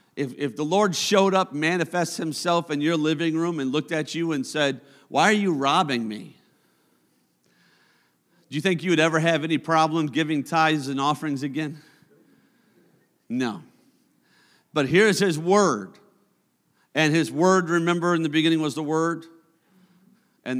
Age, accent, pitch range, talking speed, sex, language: 50-69, American, 150-190 Hz, 155 wpm, male, English